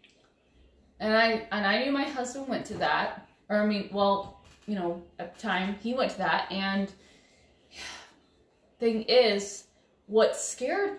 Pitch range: 195-245 Hz